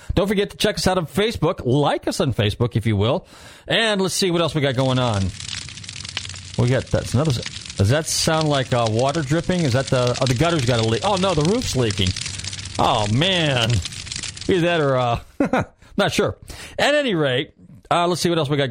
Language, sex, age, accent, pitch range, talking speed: English, male, 40-59, American, 110-150 Hz, 210 wpm